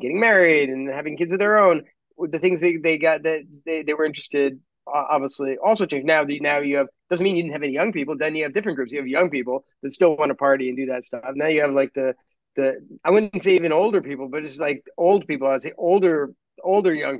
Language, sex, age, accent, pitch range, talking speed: English, male, 30-49, American, 130-155 Hz, 255 wpm